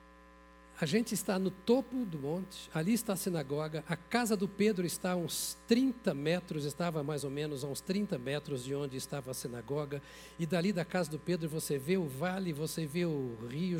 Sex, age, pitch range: male, 60-79, 145-220 Hz